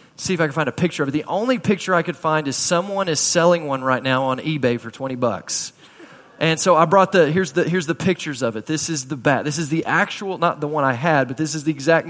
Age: 20-39